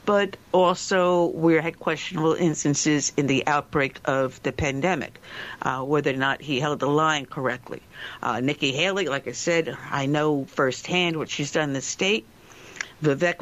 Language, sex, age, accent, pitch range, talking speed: English, female, 60-79, American, 145-190 Hz, 165 wpm